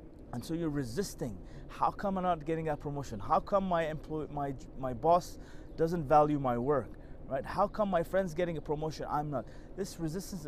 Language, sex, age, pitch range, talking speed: English, male, 30-49, 135-175 Hz, 195 wpm